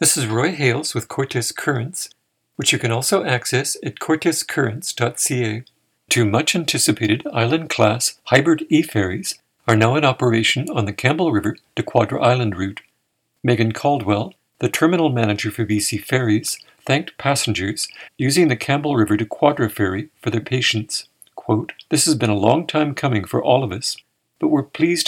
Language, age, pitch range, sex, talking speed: English, 50-69, 110-140 Hz, male, 160 wpm